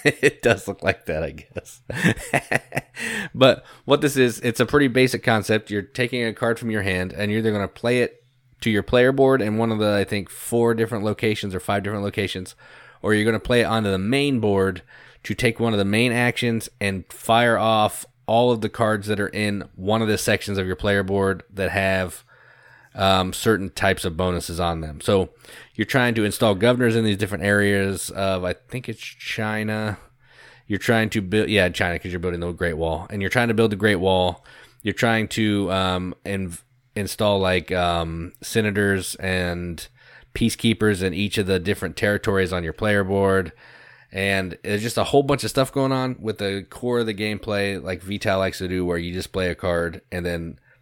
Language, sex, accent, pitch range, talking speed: English, male, American, 95-115 Hz, 210 wpm